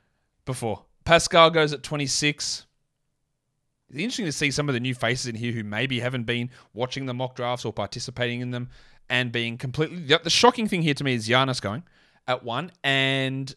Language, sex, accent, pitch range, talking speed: English, male, Australian, 120-150 Hz, 195 wpm